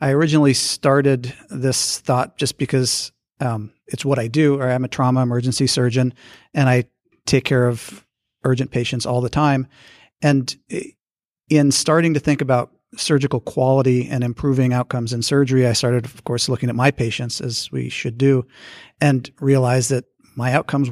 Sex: male